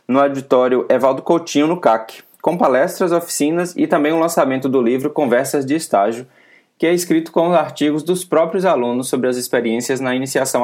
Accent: Brazilian